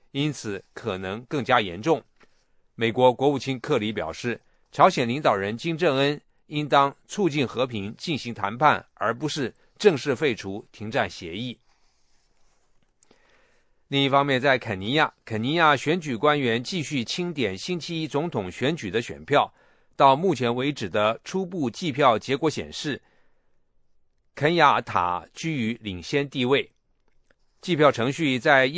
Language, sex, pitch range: English, male, 115-150 Hz